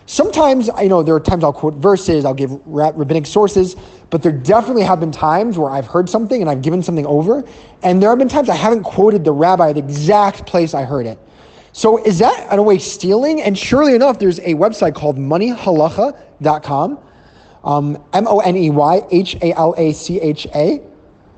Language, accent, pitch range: English, American, 150-205 Hz